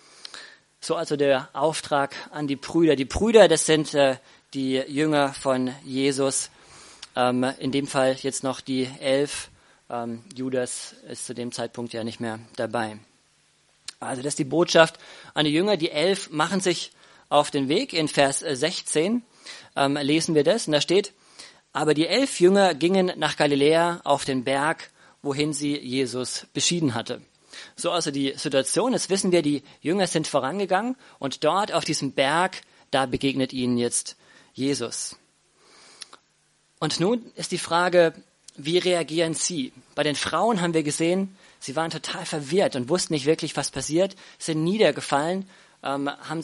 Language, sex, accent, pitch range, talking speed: German, male, German, 135-170 Hz, 160 wpm